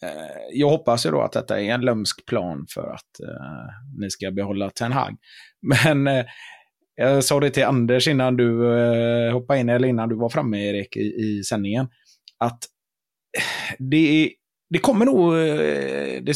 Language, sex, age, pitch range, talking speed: Swedish, male, 30-49, 115-140 Hz, 170 wpm